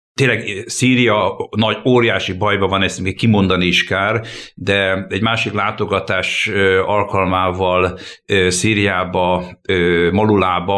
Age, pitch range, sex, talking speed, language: 60-79, 95-120 Hz, male, 90 wpm, Hungarian